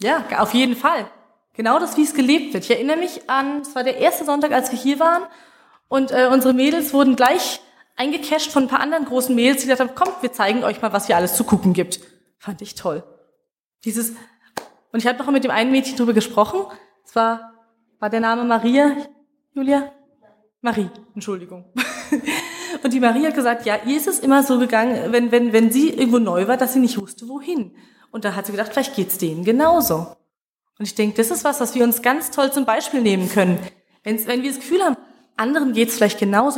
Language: German